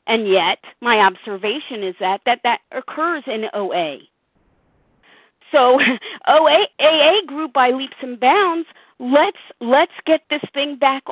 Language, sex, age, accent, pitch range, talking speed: English, female, 40-59, American, 245-325 Hz, 135 wpm